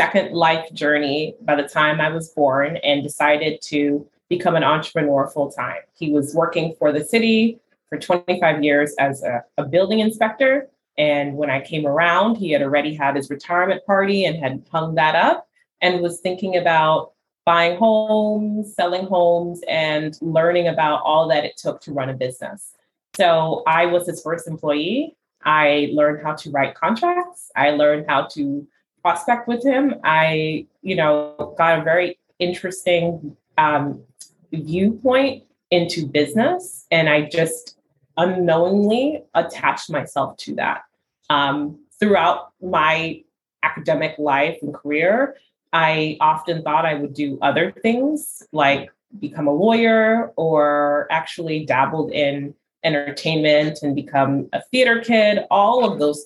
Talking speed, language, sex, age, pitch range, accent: 145 wpm, English, female, 20-39, 150-185 Hz, American